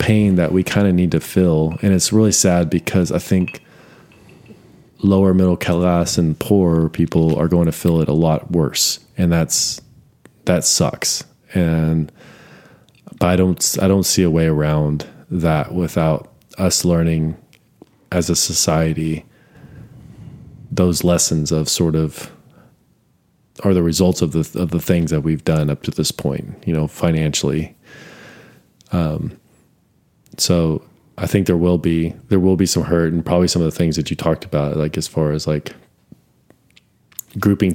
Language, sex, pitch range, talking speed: English, male, 80-95 Hz, 160 wpm